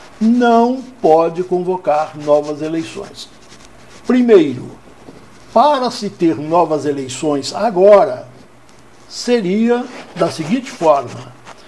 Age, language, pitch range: 60-79, English, 140-190 Hz